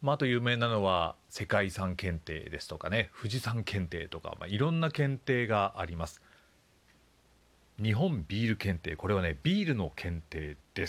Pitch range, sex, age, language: 85-135 Hz, male, 40-59, Japanese